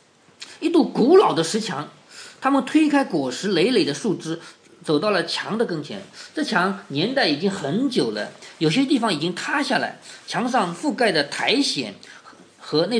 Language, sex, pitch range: Chinese, male, 180-270 Hz